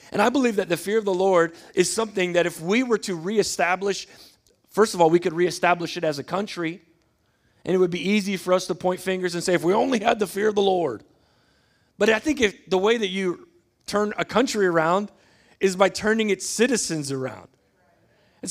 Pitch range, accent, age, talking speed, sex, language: 170-215 Hz, American, 40-59, 215 wpm, male, English